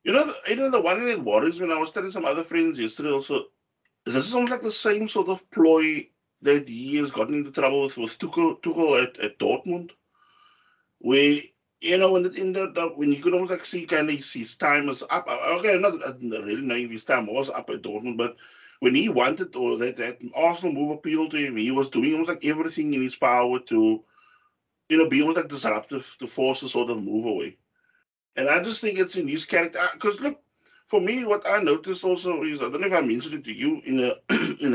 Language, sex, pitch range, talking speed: English, male, 130-220 Hz, 235 wpm